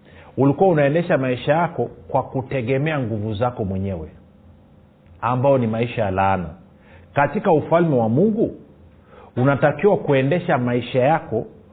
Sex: male